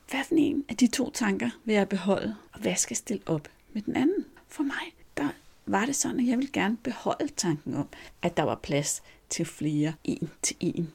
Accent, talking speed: native, 205 wpm